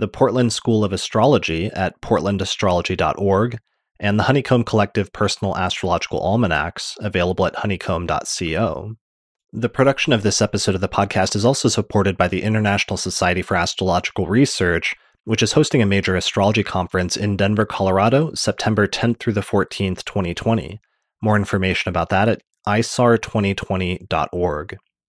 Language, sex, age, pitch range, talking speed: English, male, 30-49, 95-115 Hz, 135 wpm